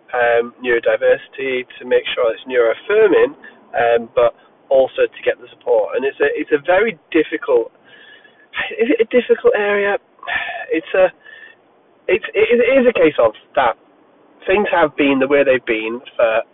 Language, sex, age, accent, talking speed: English, male, 30-49, British, 155 wpm